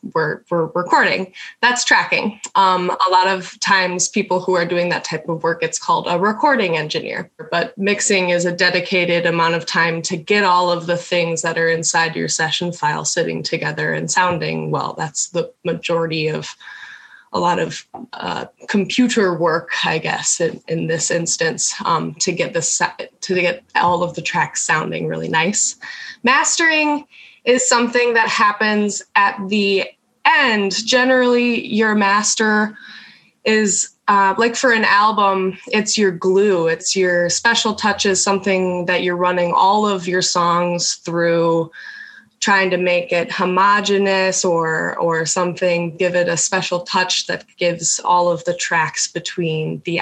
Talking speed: 160 wpm